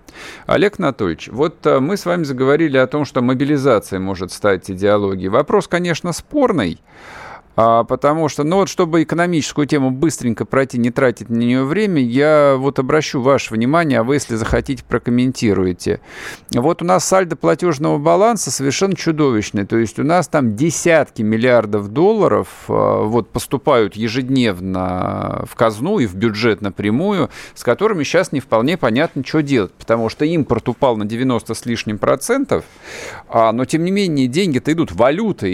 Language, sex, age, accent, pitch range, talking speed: Russian, male, 50-69, native, 115-165 Hz, 150 wpm